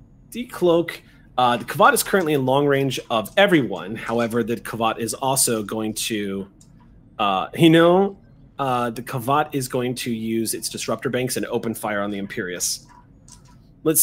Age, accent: 30-49, American